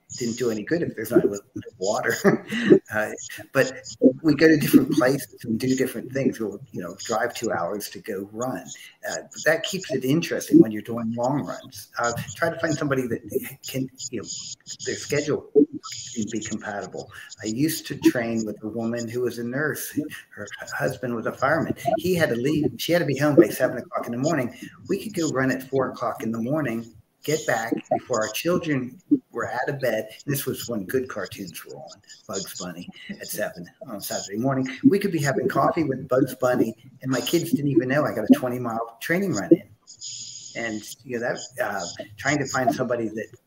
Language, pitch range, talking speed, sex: English, 115-155 Hz, 210 wpm, male